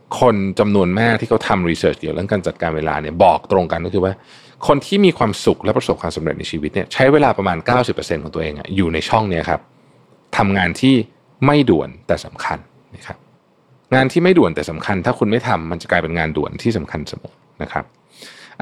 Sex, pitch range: male, 85-125 Hz